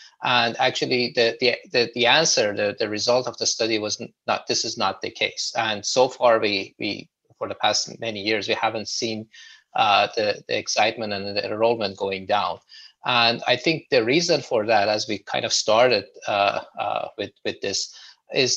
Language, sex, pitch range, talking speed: English, male, 110-130 Hz, 195 wpm